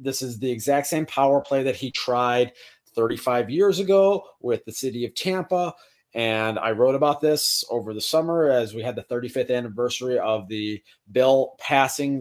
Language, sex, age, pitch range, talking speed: English, male, 30-49, 115-145 Hz, 175 wpm